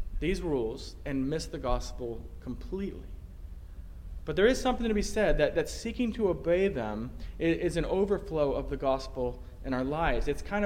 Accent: American